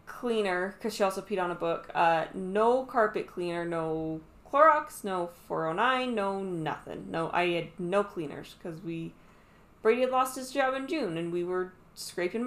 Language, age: English, 20-39